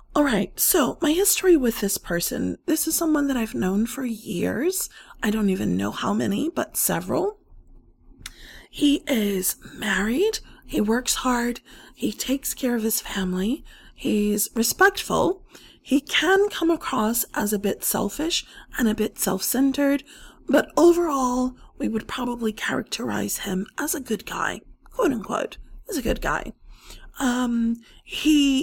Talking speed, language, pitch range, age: 140 wpm, English, 205-285 Hz, 30-49